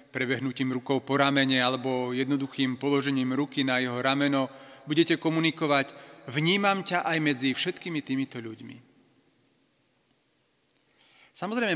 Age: 40-59